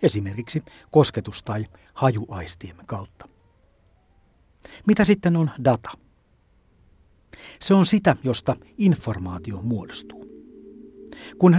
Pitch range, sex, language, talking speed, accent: 100-155 Hz, male, Finnish, 85 wpm, native